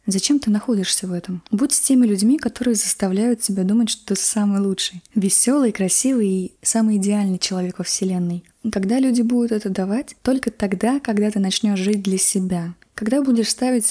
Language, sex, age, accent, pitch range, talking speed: Russian, female, 20-39, native, 190-230 Hz, 175 wpm